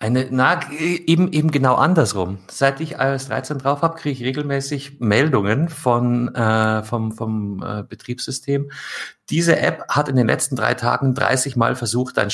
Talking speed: 165 wpm